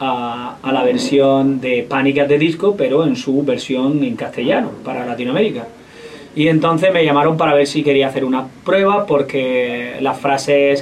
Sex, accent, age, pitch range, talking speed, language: male, Spanish, 20-39, 130-150 Hz, 165 wpm, Spanish